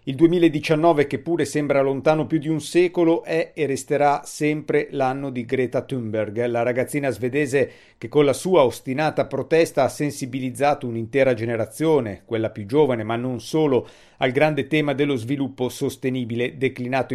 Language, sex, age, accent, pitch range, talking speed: Italian, male, 50-69, native, 125-155 Hz, 155 wpm